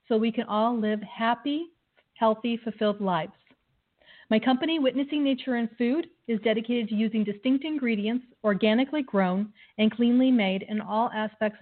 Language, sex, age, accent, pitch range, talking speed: English, female, 40-59, American, 210-260 Hz, 150 wpm